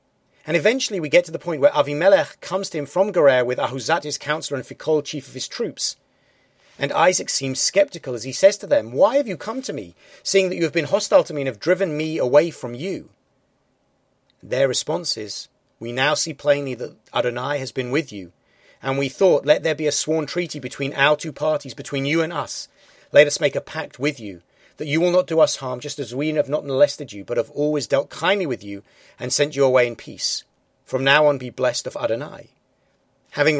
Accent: British